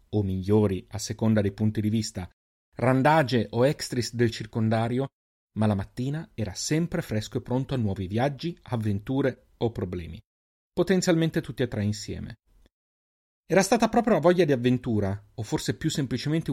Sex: male